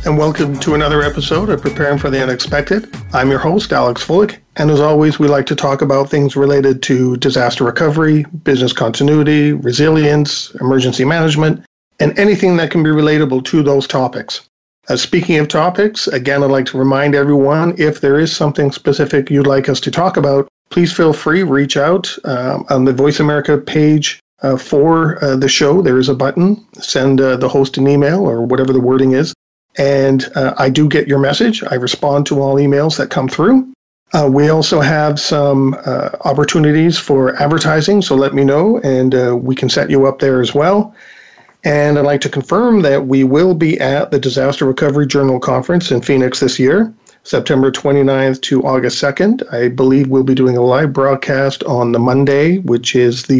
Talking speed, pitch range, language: 190 wpm, 135-155 Hz, English